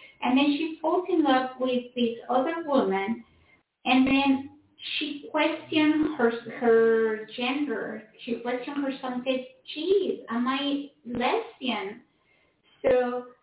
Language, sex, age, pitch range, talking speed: English, female, 30-49, 230-280 Hz, 115 wpm